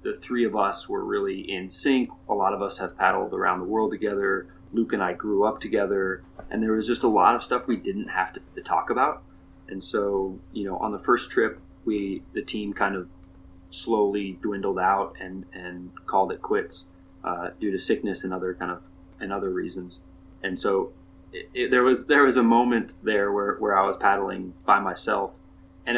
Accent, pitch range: American, 90-100 Hz